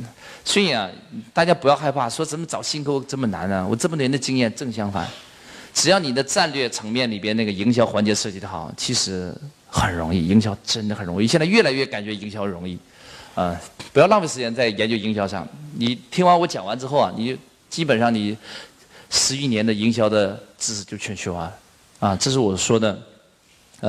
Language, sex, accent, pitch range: Chinese, male, native, 105-150 Hz